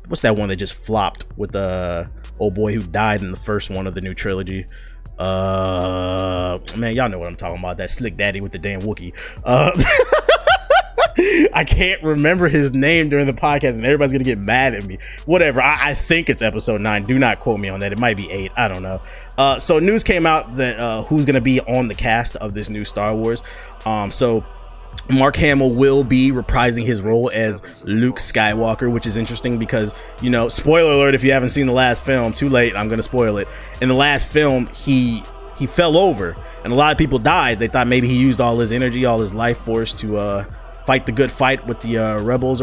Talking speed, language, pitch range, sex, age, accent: 225 wpm, English, 105-135 Hz, male, 20-39, American